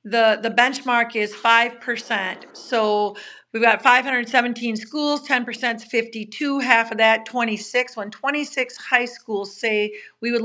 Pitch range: 205-240 Hz